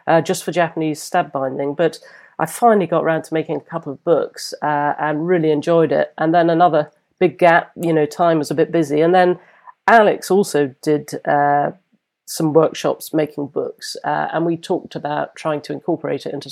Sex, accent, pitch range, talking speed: female, British, 150-175 Hz, 195 wpm